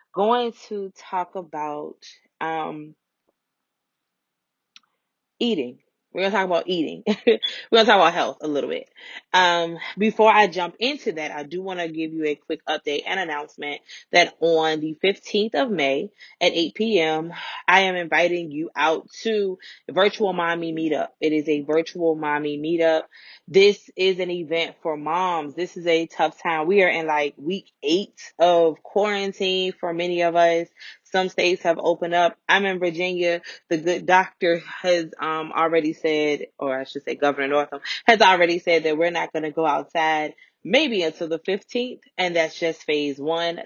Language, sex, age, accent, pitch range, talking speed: English, female, 20-39, American, 155-185 Hz, 175 wpm